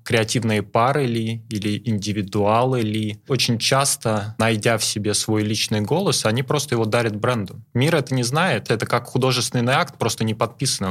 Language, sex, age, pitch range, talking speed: Russian, male, 20-39, 110-130 Hz, 165 wpm